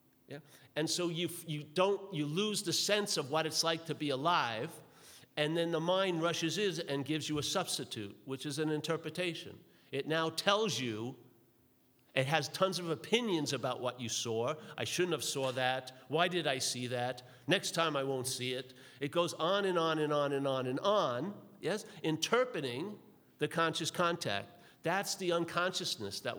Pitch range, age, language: 125-165 Hz, 50-69, English